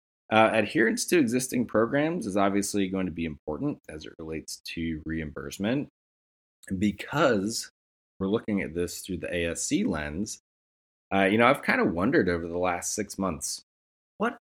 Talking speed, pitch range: 155 wpm, 80-105 Hz